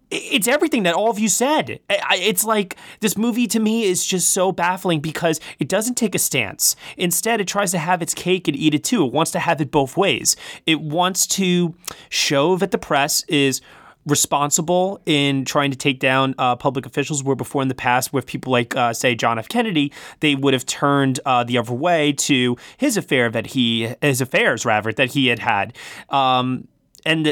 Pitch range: 135-180 Hz